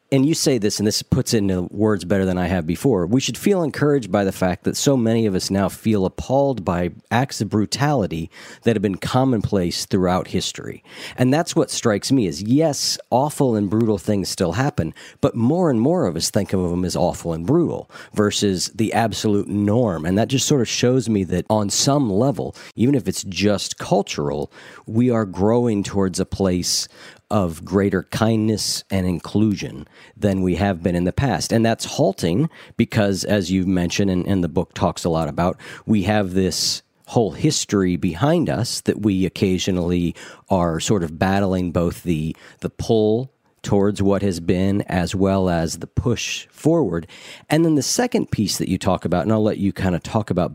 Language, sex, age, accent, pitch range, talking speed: English, male, 50-69, American, 95-115 Hz, 195 wpm